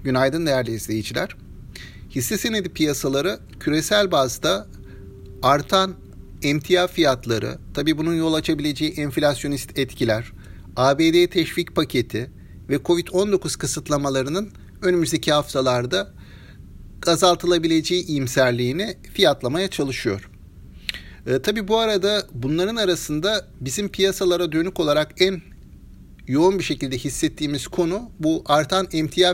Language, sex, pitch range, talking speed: Turkish, male, 130-180 Hz, 100 wpm